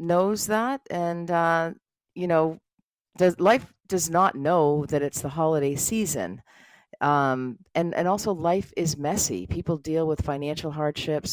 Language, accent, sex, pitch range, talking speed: English, American, female, 140-185 Hz, 150 wpm